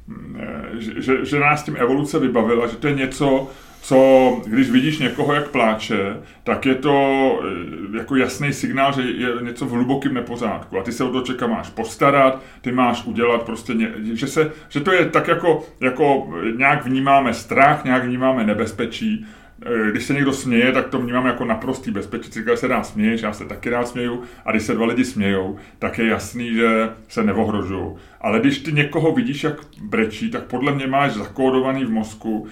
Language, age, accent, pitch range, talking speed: Czech, 30-49, native, 110-140 Hz, 185 wpm